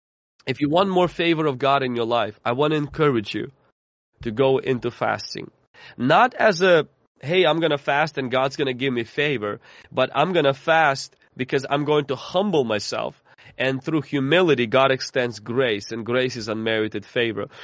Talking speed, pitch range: 190 wpm, 130-170 Hz